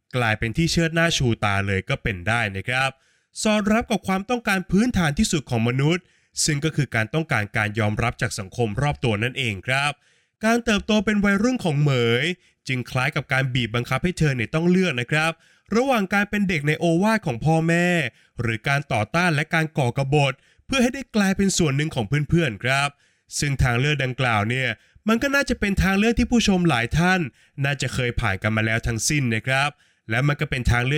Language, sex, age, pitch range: Thai, male, 20-39, 120-175 Hz